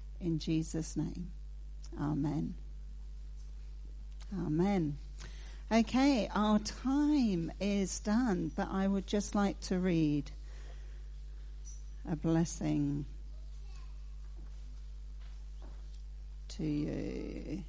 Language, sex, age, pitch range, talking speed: English, female, 50-69, 145-215 Hz, 70 wpm